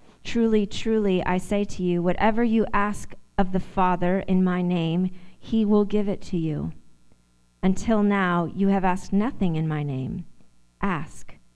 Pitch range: 165-195 Hz